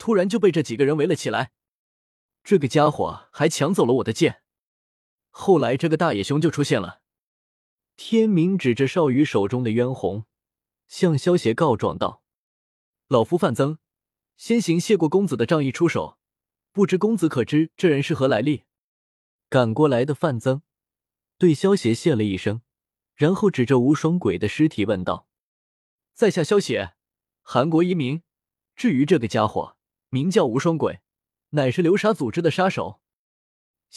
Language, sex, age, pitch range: Chinese, male, 20-39, 115-175 Hz